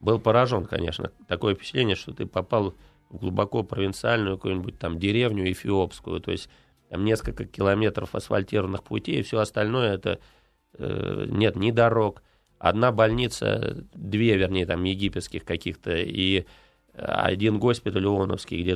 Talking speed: 130 wpm